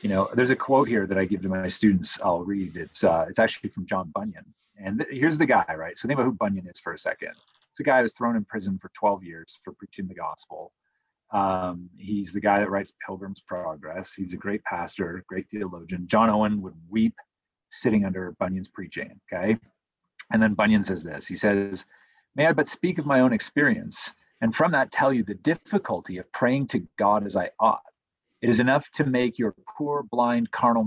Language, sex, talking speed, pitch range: English, male, 215 wpm, 100-140 Hz